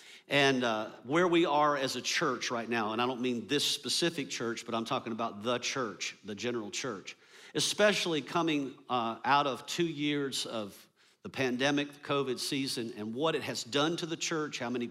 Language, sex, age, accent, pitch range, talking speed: English, male, 50-69, American, 120-145 Hz, 195 wpm